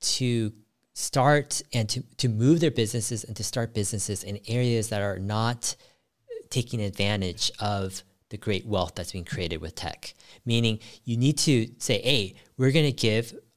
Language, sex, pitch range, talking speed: English, male, 100-135 Hz, 165 wpm